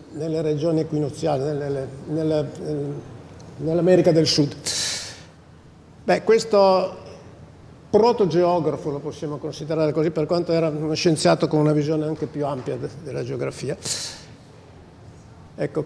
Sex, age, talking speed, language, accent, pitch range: male, 50-69, 100 wpm, Italian, native, 150-185 Hz